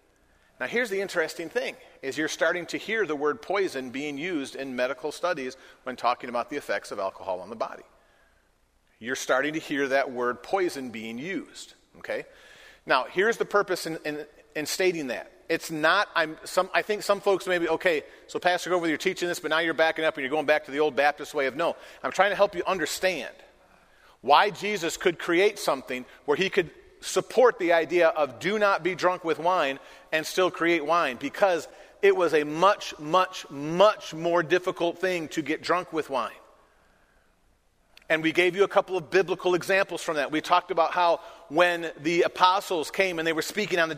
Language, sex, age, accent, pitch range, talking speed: English, male, 40-59, American, 160-205 Hz, 205 wpm